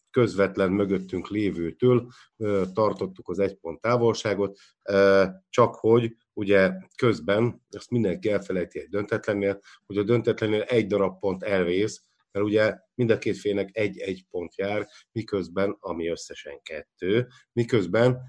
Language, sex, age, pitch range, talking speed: Hungarian, male, 50-69, 95-135 Hz, 125 wpm